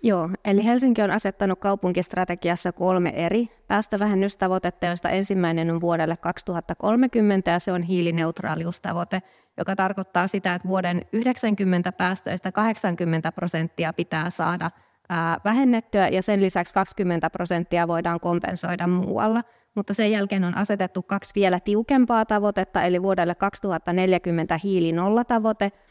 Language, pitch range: Finnish, 175-205 Hz